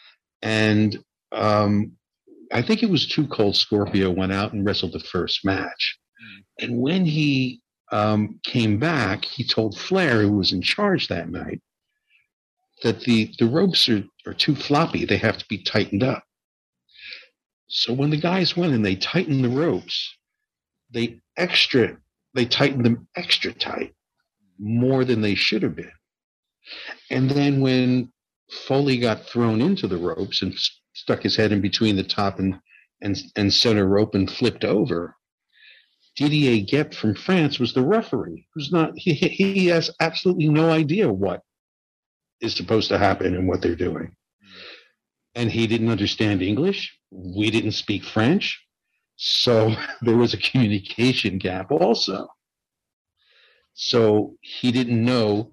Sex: male